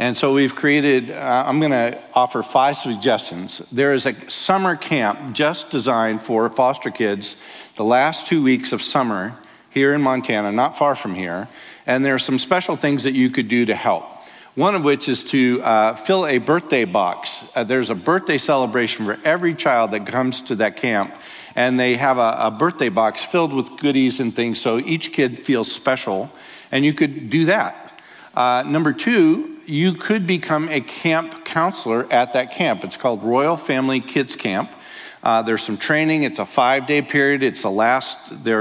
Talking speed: 190 wpm